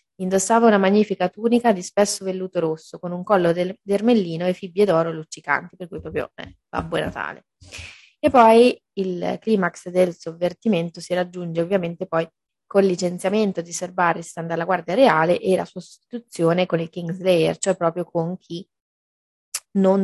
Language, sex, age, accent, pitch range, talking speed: Italian, female, 20-39, native, 175-200 Hz, 160 wpm